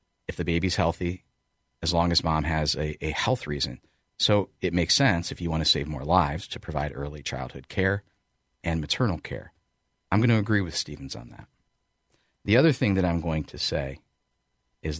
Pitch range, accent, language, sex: 75-95 Hz, American, English, male